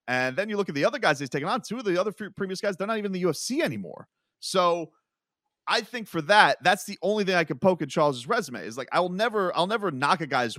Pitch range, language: 135-190 Hz, English